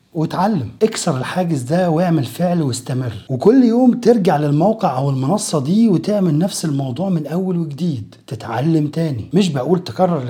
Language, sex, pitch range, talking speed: Arabic, male, 130-190 Hz, 145 wpm